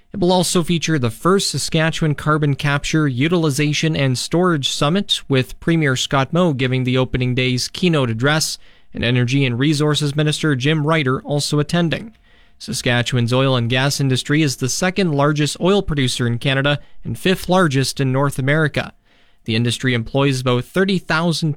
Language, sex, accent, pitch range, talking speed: English, male, American, 125-160 Hz, 155 wpm